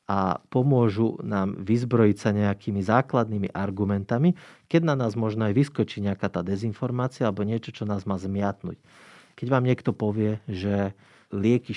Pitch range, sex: 105-125 Hz, male